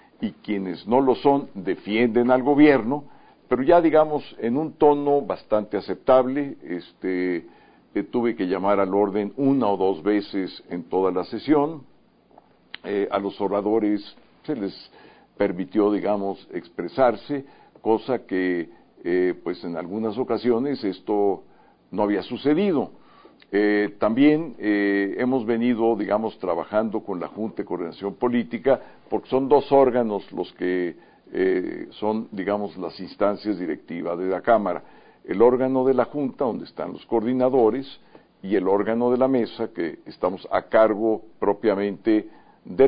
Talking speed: 140 wpm